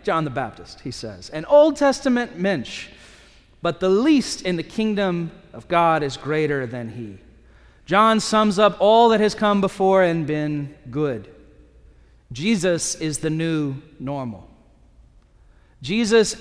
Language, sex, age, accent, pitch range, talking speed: English, male, 30-49, American, 135-195 Hz, 140 wpm